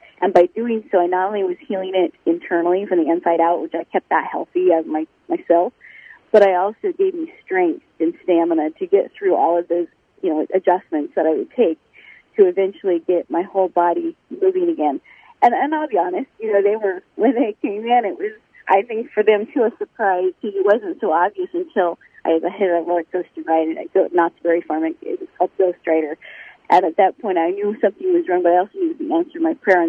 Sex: female